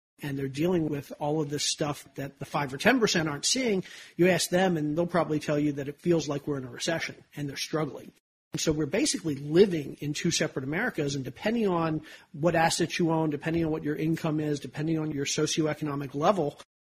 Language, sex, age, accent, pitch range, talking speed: English, male, 40-59, American, 145-165 Hz, 215 wpm